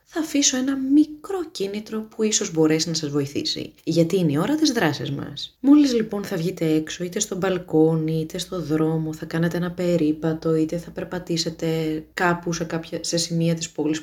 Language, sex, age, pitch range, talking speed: Greek, female, 20-39, 155-240 Hz, 185 wpm